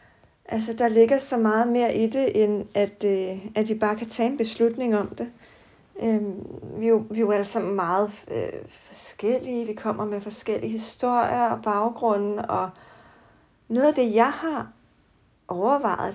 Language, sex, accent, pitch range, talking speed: Danish, female, native, 205-235 Hz, 155 wpm